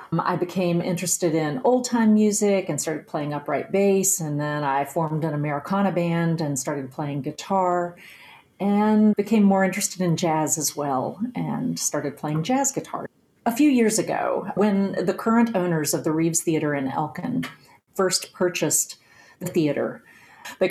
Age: 40-59